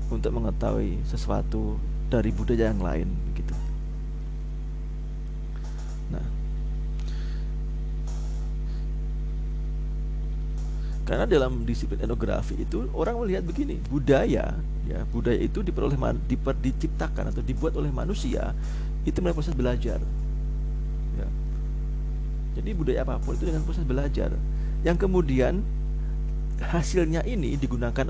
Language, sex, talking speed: Indonesian, male, 95 wpm